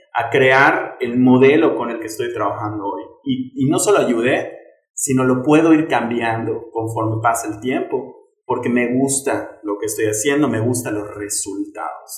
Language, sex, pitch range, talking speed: Spanish, male, 115-155 Hz, 170 wpm